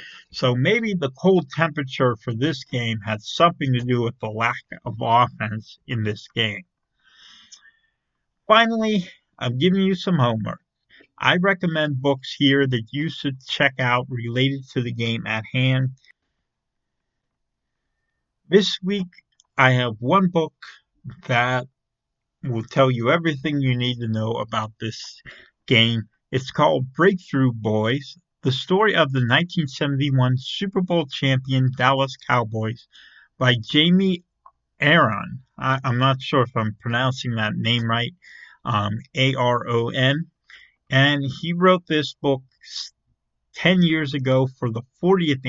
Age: 50-69